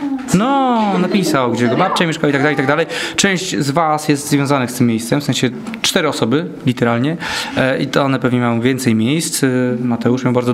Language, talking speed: Polish, 200 wpm